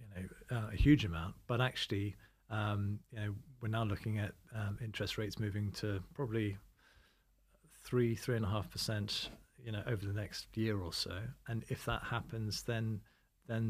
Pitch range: 100-120 Hz